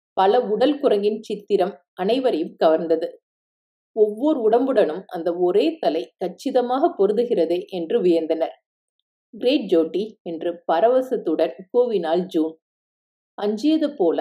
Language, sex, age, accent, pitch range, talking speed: Tamil, female, 50-69, native, 180-295 Hz, 95 wpm